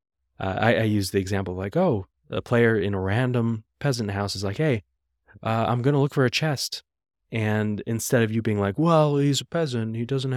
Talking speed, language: 225 wpm, English